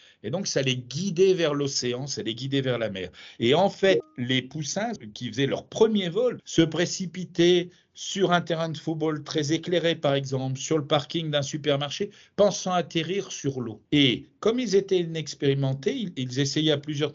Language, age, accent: French, 50-69, French